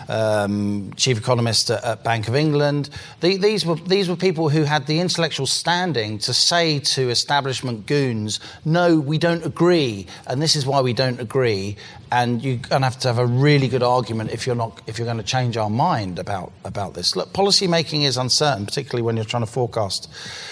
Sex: male